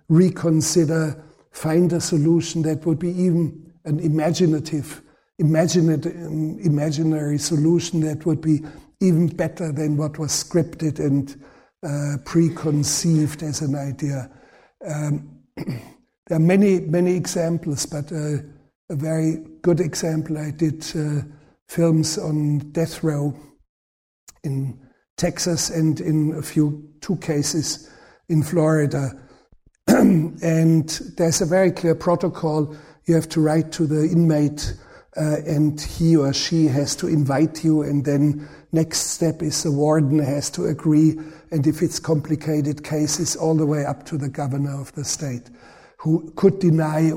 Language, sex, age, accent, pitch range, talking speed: English, male, 60-79, German, 150-165 Hz, 135 wpm